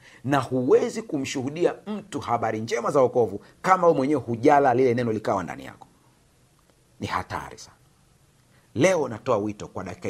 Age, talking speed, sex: 50-69, 150 wpm, male